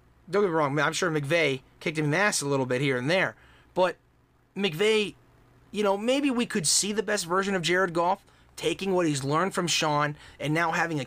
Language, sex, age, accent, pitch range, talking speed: English, male, 30-49, American, 135-180 Hz, 230 wpm